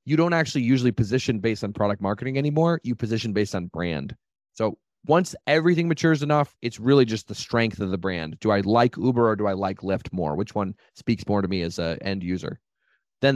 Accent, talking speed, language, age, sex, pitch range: American, 220 wpm, English, 30-49, male, 110-145 Hz